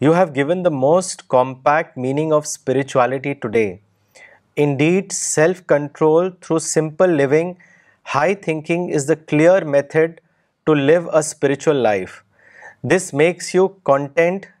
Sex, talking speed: male, 125 wpm